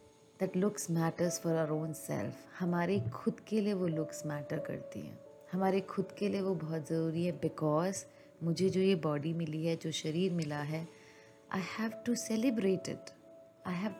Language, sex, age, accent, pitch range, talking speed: Hindi, female, 30-49, native, 155-195 Hz, 180 wpm